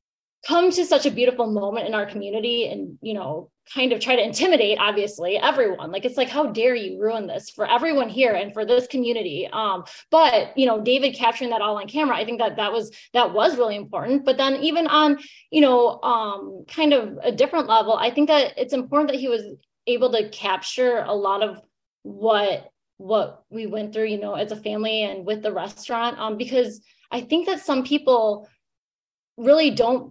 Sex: female